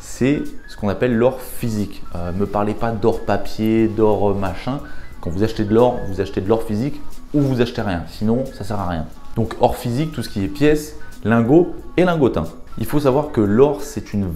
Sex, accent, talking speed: male, French, 215 wpm